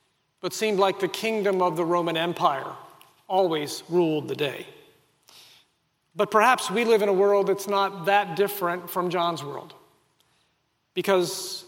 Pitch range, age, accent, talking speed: 170-205 Hz, 40-59, American, 145 wpm